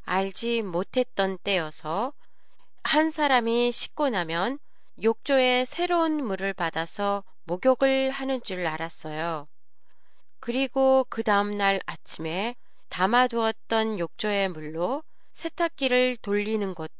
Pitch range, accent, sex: 180-255 Hz, Korean, female